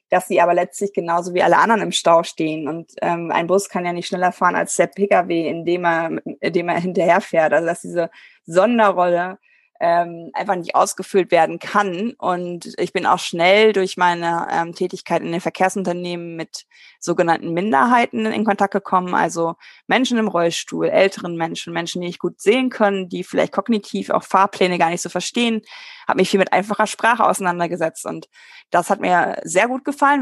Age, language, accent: 20-39, German, German